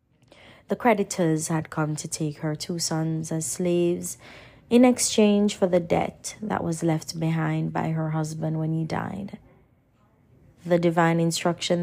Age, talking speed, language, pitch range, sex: 20-39, 145 wpm, English, 150-185 Hz, female